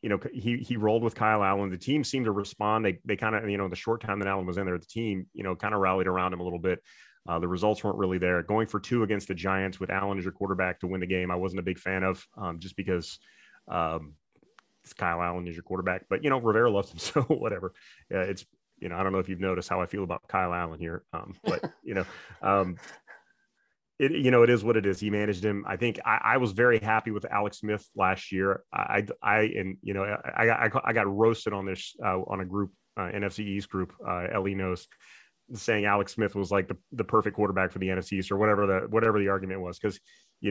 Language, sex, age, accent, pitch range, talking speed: English, male, 30-49, American, 90-105 Hz, 260 wpm